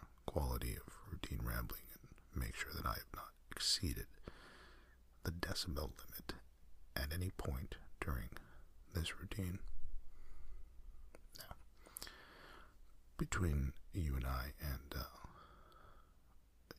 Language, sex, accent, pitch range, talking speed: English, male, American, 65-85 Hz, 105 wpm